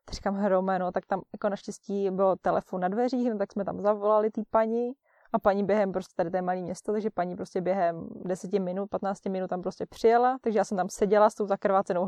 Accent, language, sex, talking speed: native, Czech, female, 225 wpm